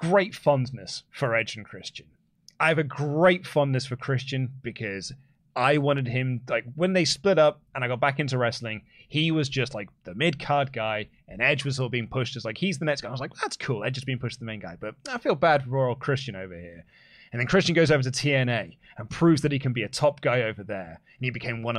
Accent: British